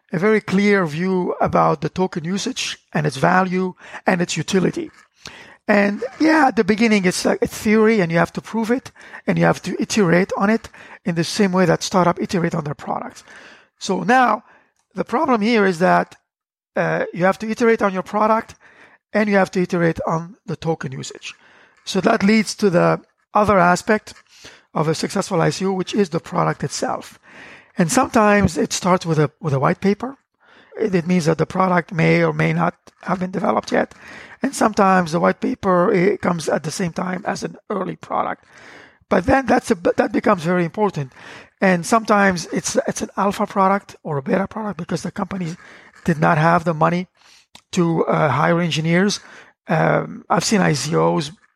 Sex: male